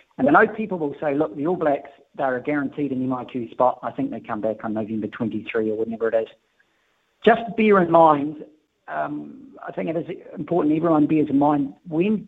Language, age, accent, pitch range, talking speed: English, 50-69, British, 135-170 Hz, 205 wpm